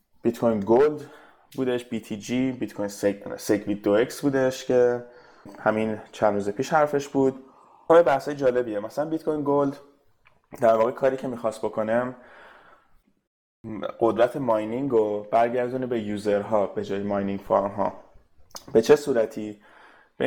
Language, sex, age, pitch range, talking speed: Persian, male, 20-39, 110-135 Hz, 125 wpm